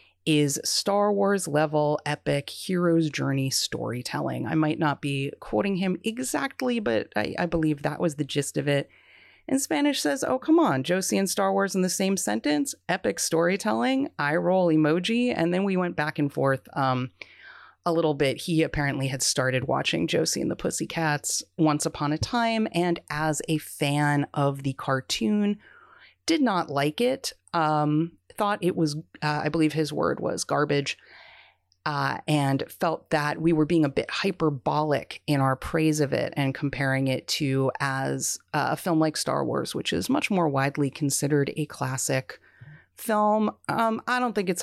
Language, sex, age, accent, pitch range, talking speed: English, female, 30-49, American, 145-185 Hz, 175 wpm